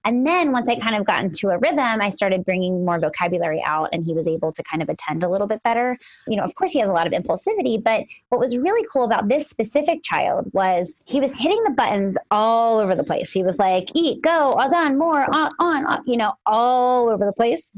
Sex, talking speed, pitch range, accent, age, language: female, 250 wpm, 200-270 Hz, American, 20-39, English